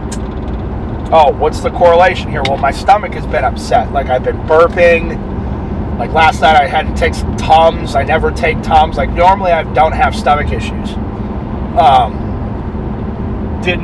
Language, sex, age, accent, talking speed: English, male, 30-49, American, 160 wpm